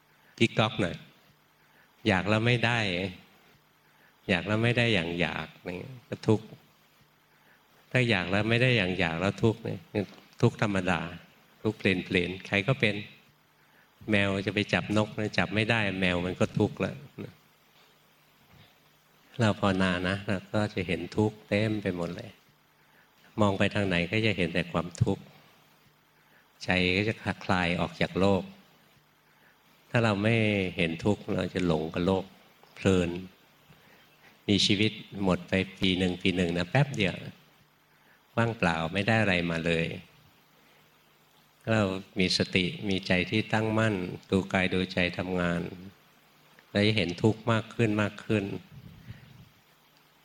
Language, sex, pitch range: Thai, male, 90-110 Hz